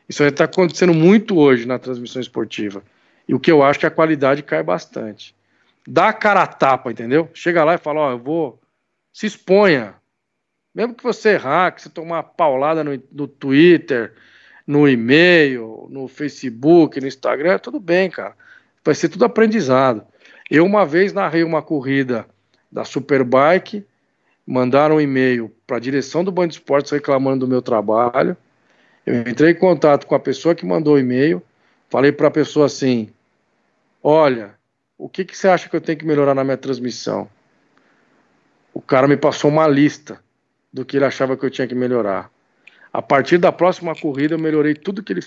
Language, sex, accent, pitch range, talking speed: Portuguese, male, Brazilian, 130-165 Hz, 180 wpm